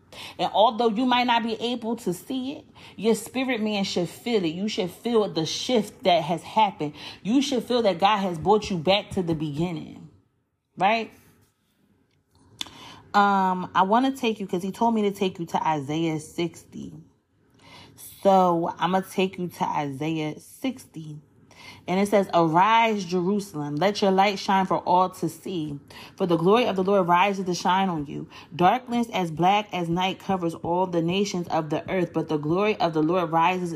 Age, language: 30-49, English